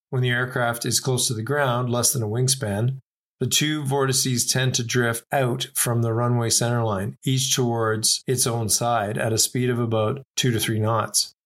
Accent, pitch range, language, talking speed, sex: American, 110-130 Hz, English, 195 wpm, male